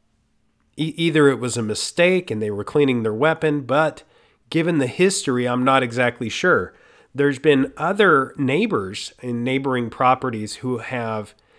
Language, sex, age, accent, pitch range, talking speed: English, male, 40-59, American, 120-140 Hz, 145 wpm